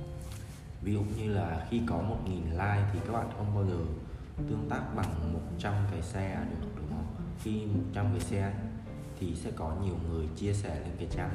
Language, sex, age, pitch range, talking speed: Vietnamese, male, 20-39, 85-110 Hz, 210 wpm